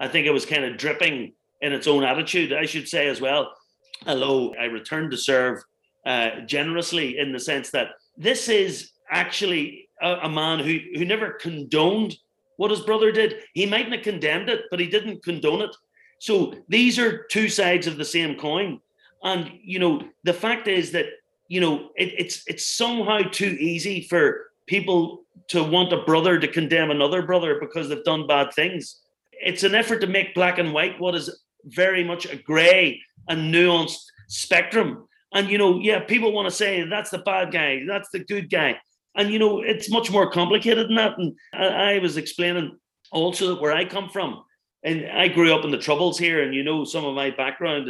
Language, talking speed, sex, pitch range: English, 195 wpm, male, 155-210 Hz